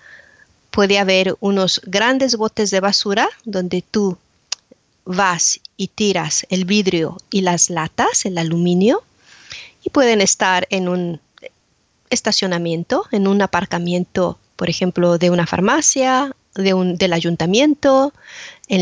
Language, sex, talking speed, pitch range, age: English, female, 120 wpm, 180-230 Hz, 40-59